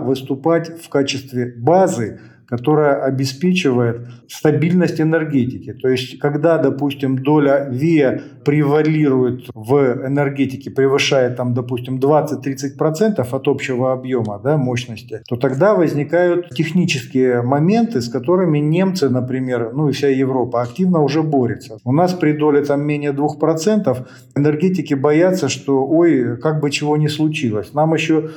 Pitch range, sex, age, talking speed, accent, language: 130-155 Hz, male, 40-59, 120 wpm, native, Russian